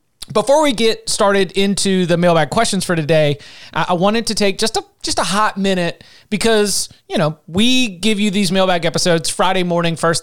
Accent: American